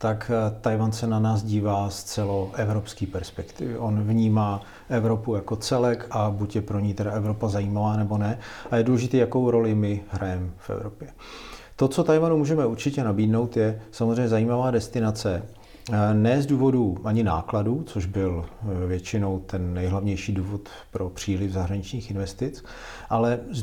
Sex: male